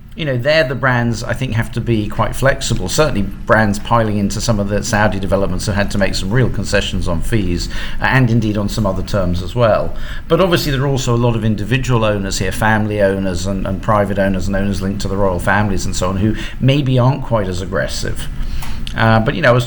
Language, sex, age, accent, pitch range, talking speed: English, male, 50-69, British, 100-120 Hz, 240 wpm